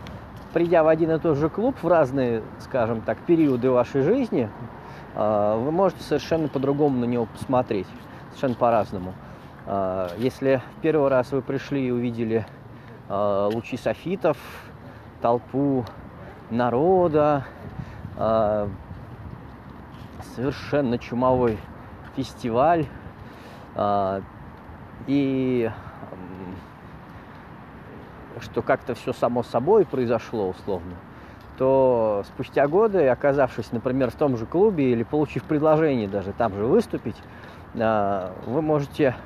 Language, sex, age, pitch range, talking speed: Russian, male, 20-39, 110-145 Hz, 100 wpm